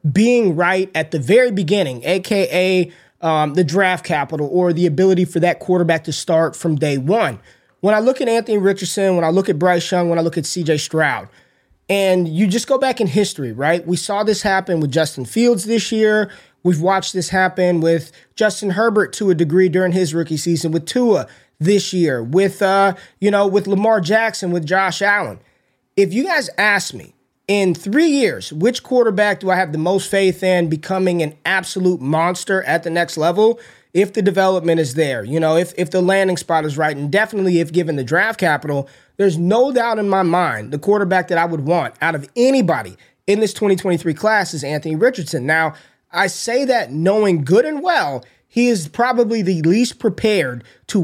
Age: 20-39